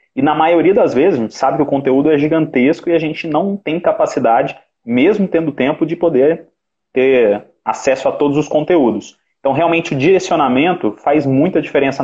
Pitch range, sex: 125-155 Hz, male